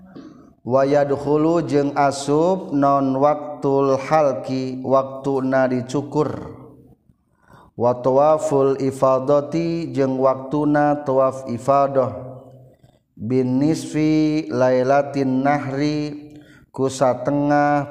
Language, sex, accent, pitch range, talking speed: Indonesian, male, native, 130-155 Hz, 65 wpm